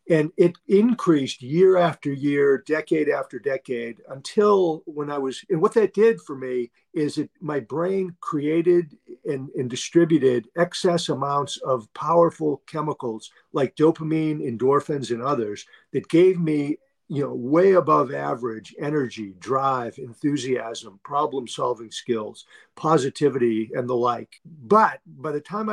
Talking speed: 140 wpm